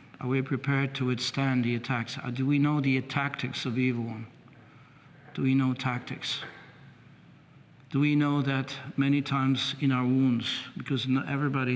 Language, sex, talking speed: English, male, 165 wpm